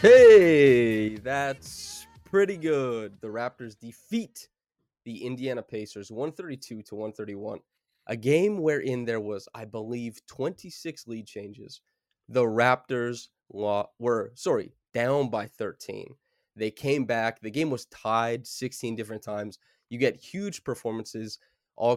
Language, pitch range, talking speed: English, 105-135 Hz, 125 wpm